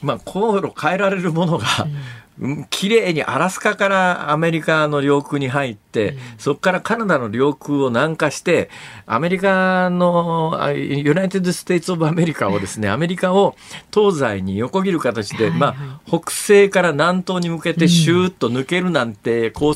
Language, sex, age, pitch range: Japanese, male, 50-69, 130-195 Hz